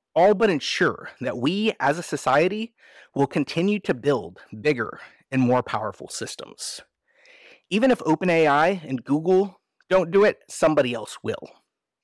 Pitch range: 130-195 Hz